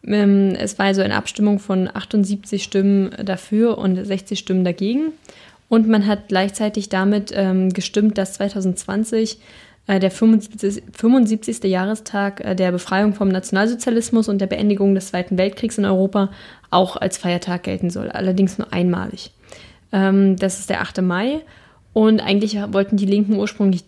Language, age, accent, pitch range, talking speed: German, 10-29, German, 185-210 Hz, 155 wpm